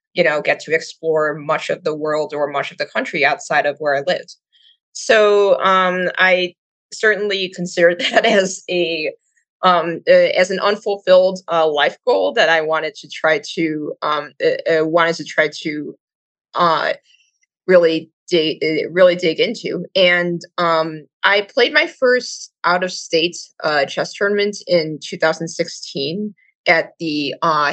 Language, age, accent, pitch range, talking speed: English, 20-39, American, 160-245 Hz, 160 wpm